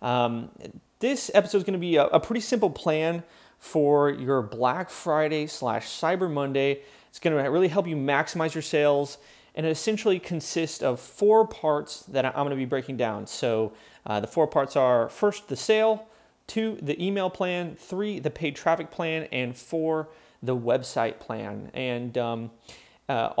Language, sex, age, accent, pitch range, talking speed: English, male, 30-49, American, 130-175 Hz, 175 wpm